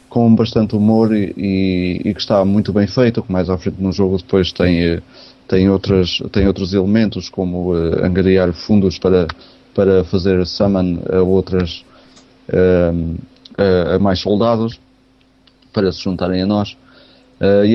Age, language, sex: 20-39, Portuguese, male